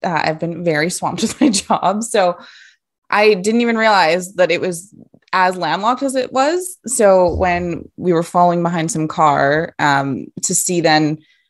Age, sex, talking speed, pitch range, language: 20-39, female, 170 wpm, 160-245 Hz, English